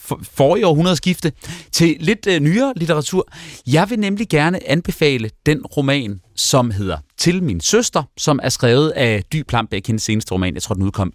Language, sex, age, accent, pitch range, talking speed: Danish, male, 30-49, native, 100-150 Hz, 190 wpm